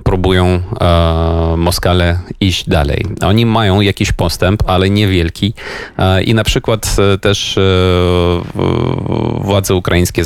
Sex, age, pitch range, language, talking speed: male, 30-49, 90-100 Hz, Polish, 115 wpm